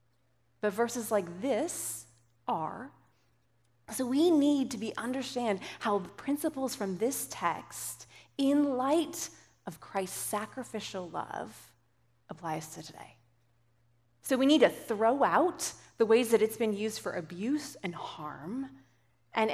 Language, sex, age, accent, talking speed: English, female, 30-49, American, 130 wpm